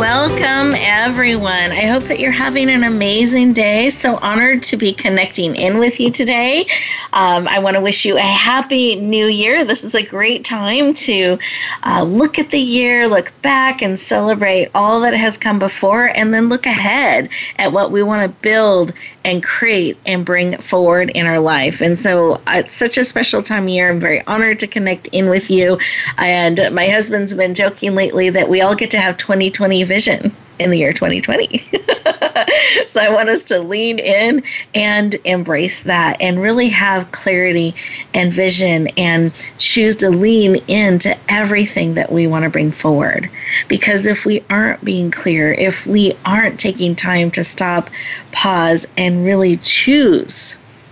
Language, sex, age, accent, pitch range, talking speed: English, female, 30-49, American, 180-225 Hz, 175 wpm